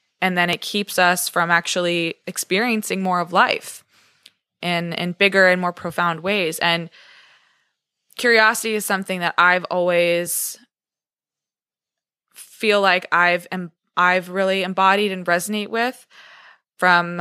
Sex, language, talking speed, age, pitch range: female, English, 120 wpm, 20-39, 165-185 Hz